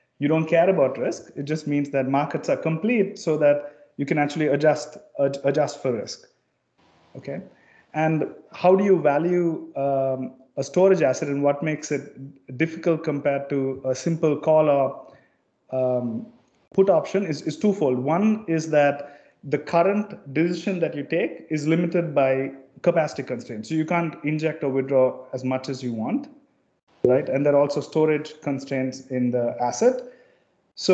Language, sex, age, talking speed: English, male, 30-49, 165 wpm